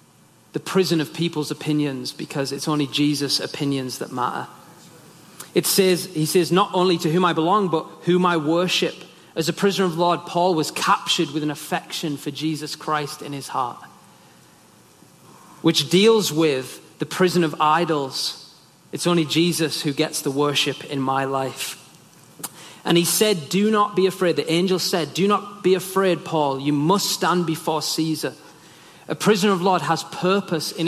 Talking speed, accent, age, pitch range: 175 wpm, British, 30-49, 150-180 Hz